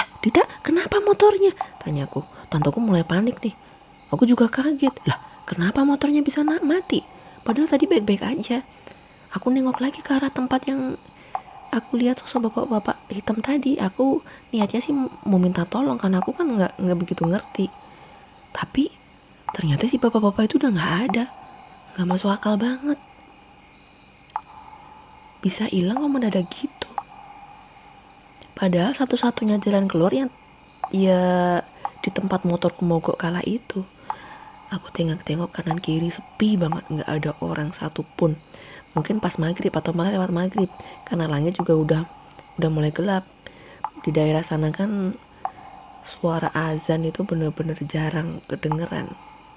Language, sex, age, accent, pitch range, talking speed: Indonesian, female, 20-39, native, 170-265 Hz, 135 wpm